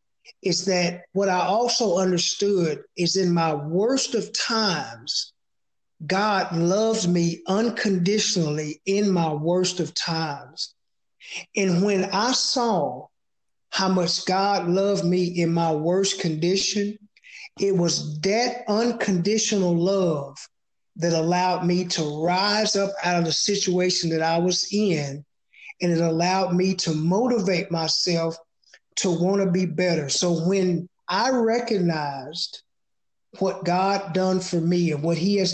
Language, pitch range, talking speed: English, 165-200 Hz, 130 wpm